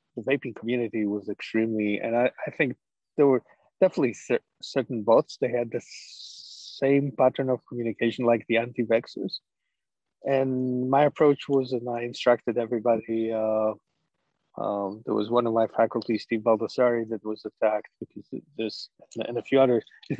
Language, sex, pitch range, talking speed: English, male, 115-135 Hz, 165 wpm